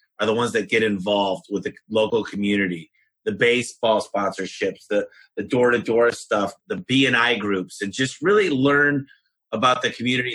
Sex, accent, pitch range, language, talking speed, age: male, American, 105-140 Hz, English, 155 wpm, 30-49